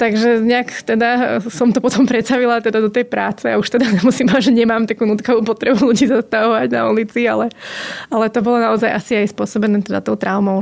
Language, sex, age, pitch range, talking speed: Slovak, female, 20-39, 215-240 Hz, 200 wpm